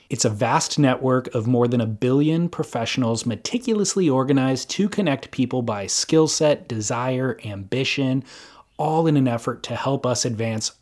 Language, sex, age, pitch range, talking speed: English, male, 30-49, 120-145 Hz, 155 wpm